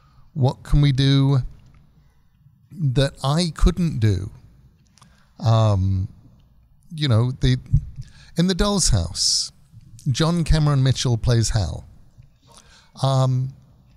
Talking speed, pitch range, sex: 90 wpm, 125-150 Hz, male